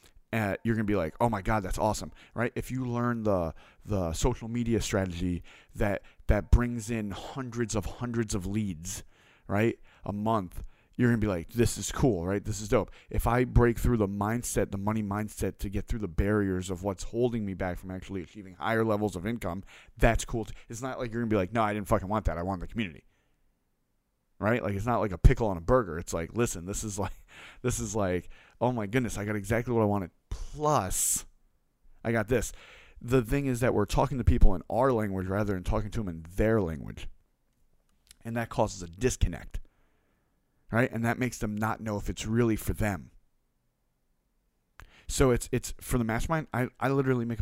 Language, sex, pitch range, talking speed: English, male, 95-120 Hz, 215 wpm